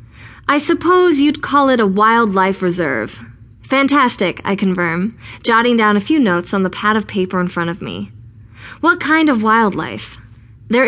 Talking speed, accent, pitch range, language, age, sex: 165 wpm, American, 160-245 Hz, English, 20-39, female